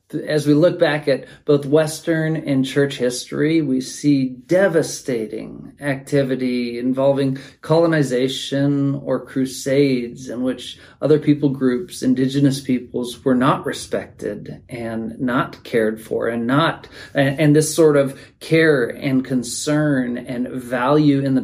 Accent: American